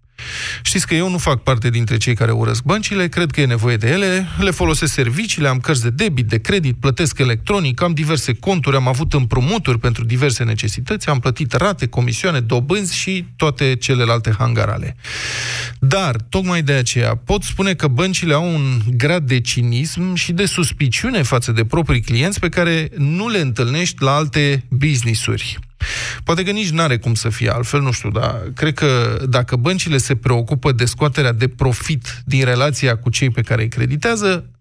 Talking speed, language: 180 wpm, Romanian